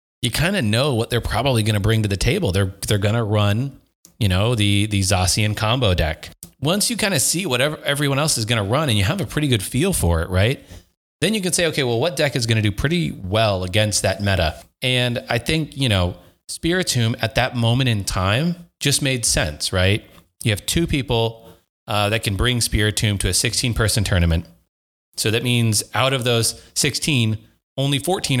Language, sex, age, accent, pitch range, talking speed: English, male, 30-49, American, 100-130 Hz, 215 wpm